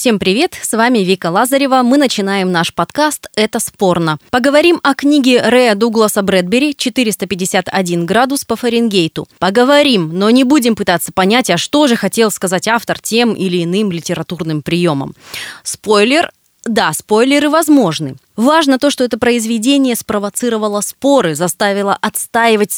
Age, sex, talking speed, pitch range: 20-39, female, 135 wpm, 195-275 Hz